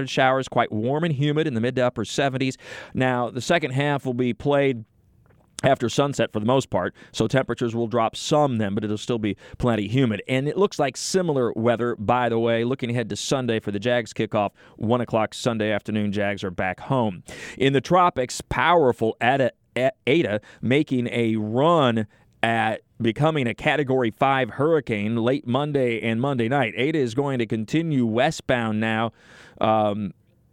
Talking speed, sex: 175 wpm, male